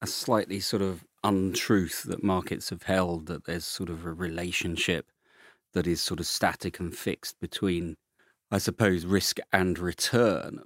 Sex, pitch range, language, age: male, 85-100 Hz, English, 40-59